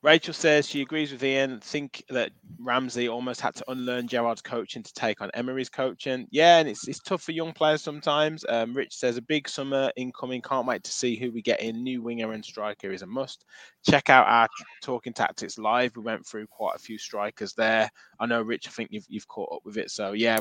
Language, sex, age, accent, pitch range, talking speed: English, male, 20-39, British, 110-130 Hz, 230 wpm